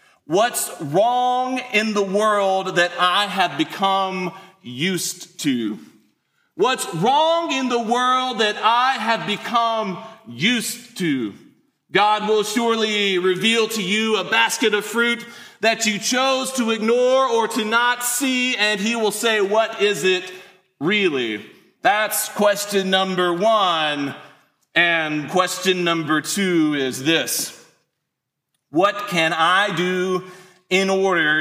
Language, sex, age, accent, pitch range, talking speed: English, male, 40-59, American, 190-245 Hz, 125 wpm